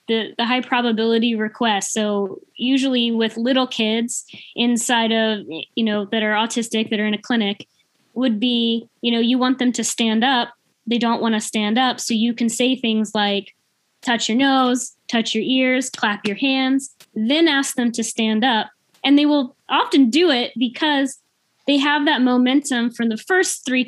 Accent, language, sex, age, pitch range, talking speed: American, Portuguese, female, 10-29, 220-260 Hz, 185 wpm